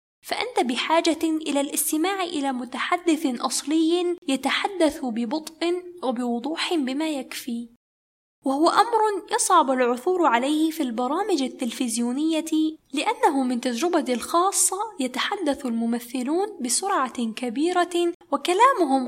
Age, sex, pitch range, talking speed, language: 10-29, female, 250-340 Hz, 90 wpm, Arabic